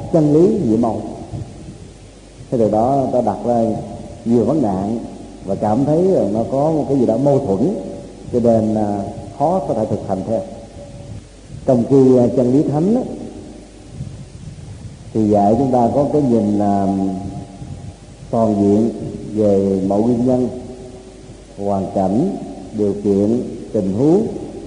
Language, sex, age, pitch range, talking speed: Vietnamese, male, 50-69, 100-130 Hz, 140 wpm